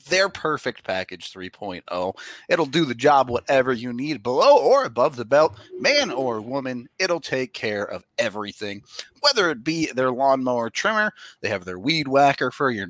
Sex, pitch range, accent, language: male, 125-180 Hz, American, English